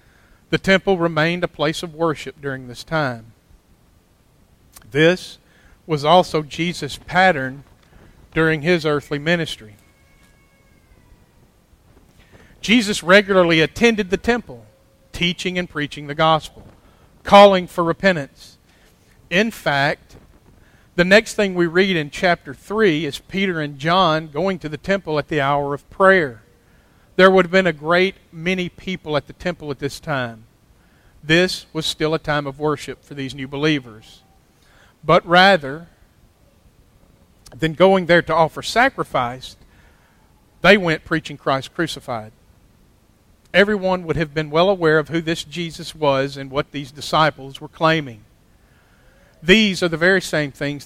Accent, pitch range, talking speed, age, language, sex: American, 135-180 Hz, 135 wpm, 50-69, English, male